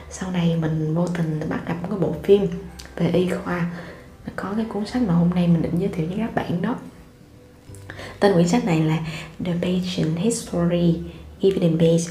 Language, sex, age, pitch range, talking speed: Vietnamese, female, 20-39, 160-195 Hz, 200 wpm